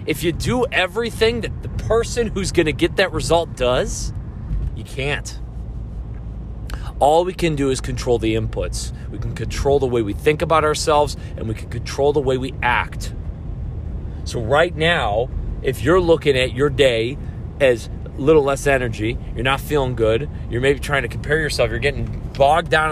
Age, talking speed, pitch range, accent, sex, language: 30-49, 180 wpm, 110-145 Hz, American, male, English